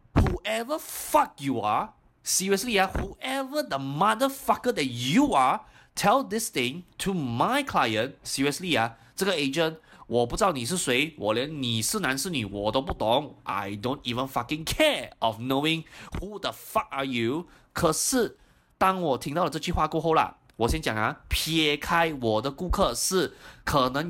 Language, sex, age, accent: Chinese, male, 20-39, native